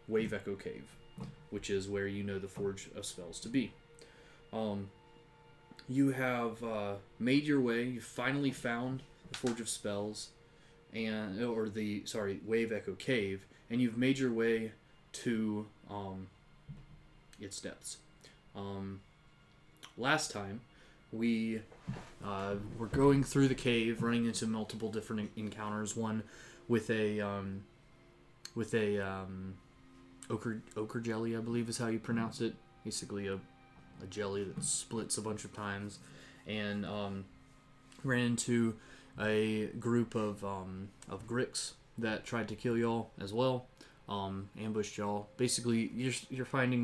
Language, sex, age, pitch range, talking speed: English, male, 20-39, 100-125 Hz, 140 wpm